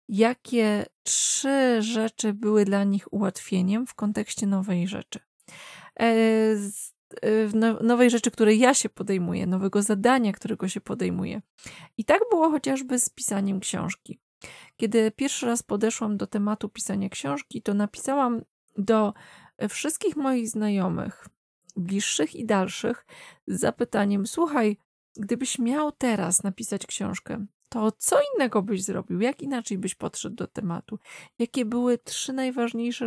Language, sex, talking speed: Polish, female, 125 wpm